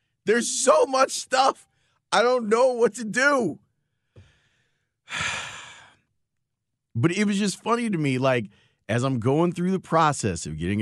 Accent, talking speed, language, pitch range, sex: American, 145 wpm, English, 115-160 Hz, male